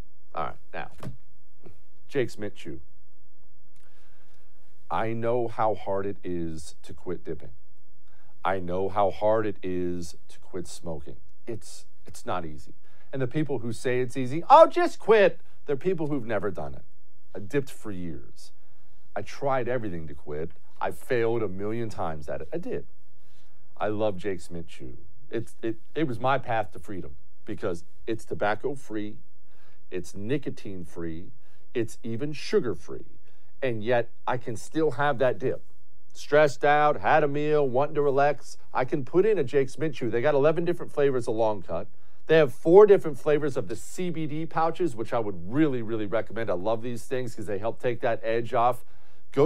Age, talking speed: 50-69, 170 wpm